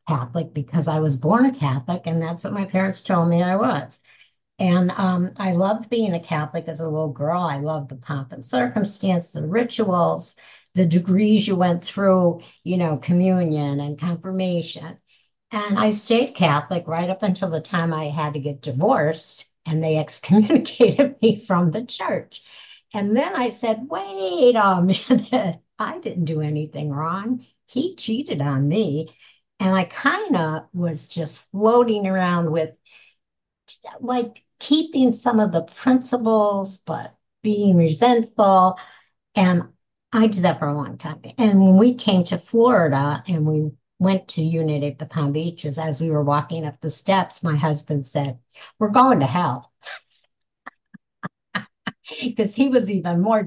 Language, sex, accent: English, female, American